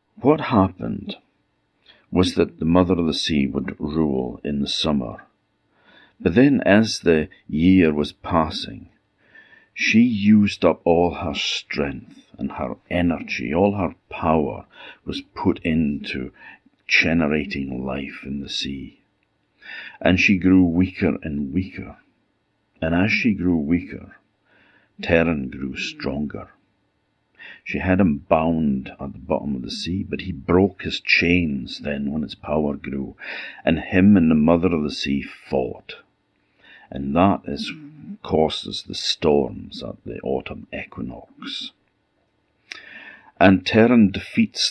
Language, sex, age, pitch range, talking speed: English, male, 50-69, 70-95 Hz, 130 wpm